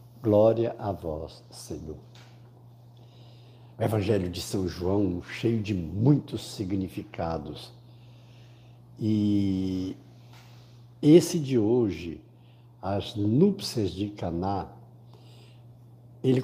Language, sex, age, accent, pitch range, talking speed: Portuguese, male, 60-79, Brazilian, 110-135 Hz, 80 wpm